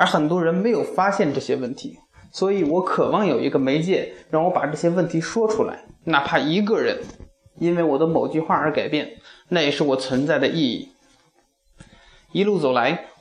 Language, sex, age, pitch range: Chinese, male, 20-39, 150-195 Hz